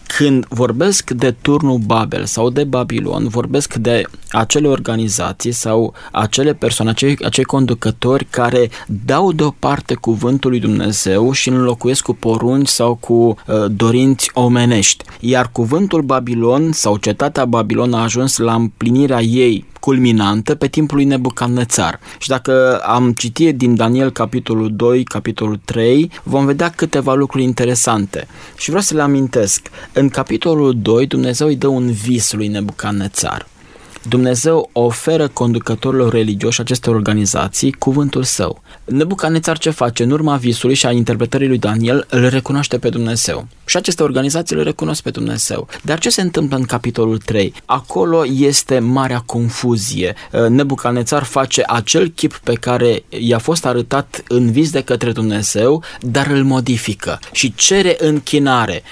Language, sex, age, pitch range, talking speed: Romanian, male, 20-39, 115-140 Hz, 140 wpm